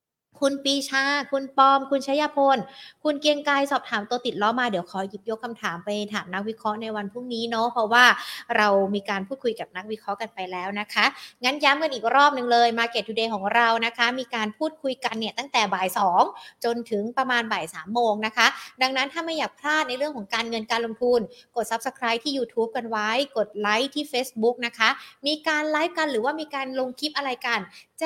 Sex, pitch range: female, 220-275 Hz